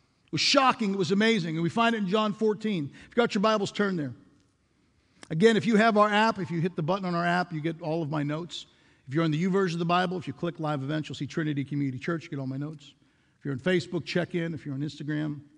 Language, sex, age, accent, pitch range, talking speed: English, male, 50-69, American, 145-205 Hz, 285 wpm